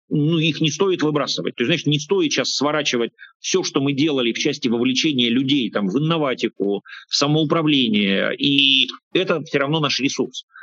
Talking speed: 175 wpm